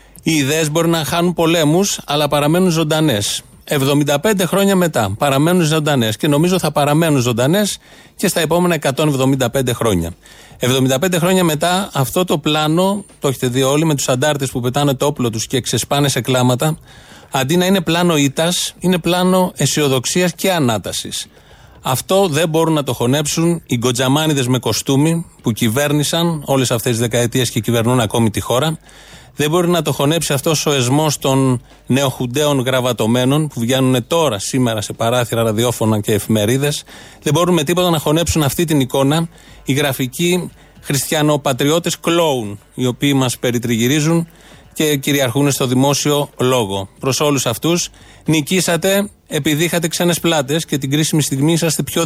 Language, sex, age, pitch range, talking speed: Greek, male, 30-49, 130-165 Hz, 150 wpm